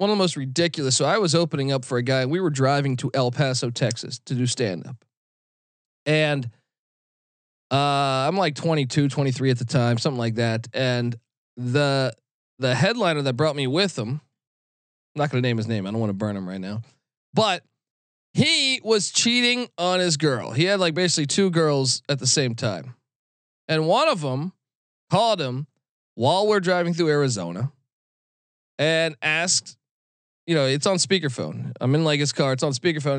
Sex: male